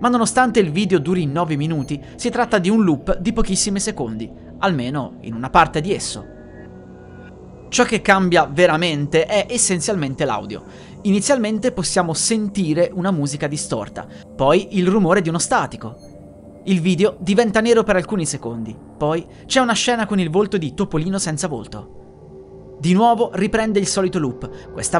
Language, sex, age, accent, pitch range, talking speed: Italian, male, 30-49, native, 145-210 Hz, 155 wpm